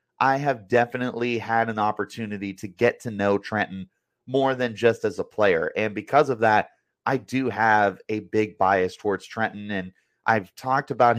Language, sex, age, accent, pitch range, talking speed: English, male, 30-49, American, 100-120 Hz, 175 wpm